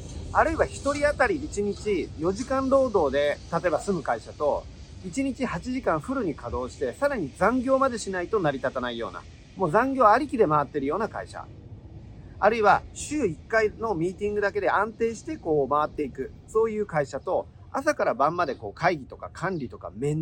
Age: 40-59